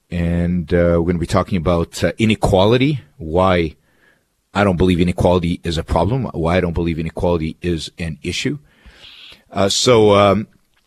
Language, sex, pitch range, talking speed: English, male, 85-115 Hz, 160 wpm